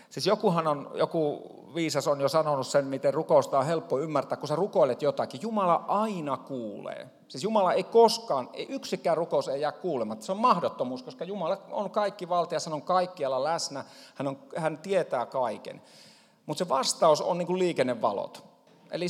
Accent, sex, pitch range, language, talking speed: native, male, 145-195 Hz, Finnish, 175 wpm